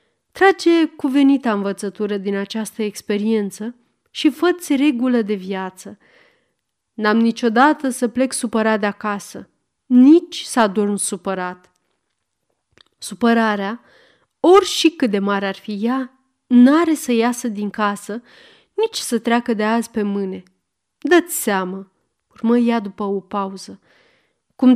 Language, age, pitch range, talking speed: Romanian, 30-49, 210-280 Hz, 125 wpm